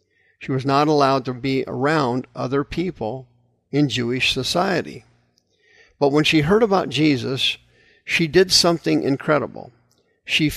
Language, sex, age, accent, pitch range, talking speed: English, male, 50-69, American, 115-155 Hz, 130 wpm